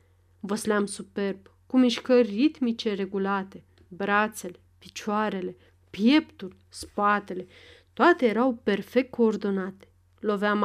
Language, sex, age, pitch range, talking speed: Romanian, female, 40-59, 190-255 Hz, 85 wpm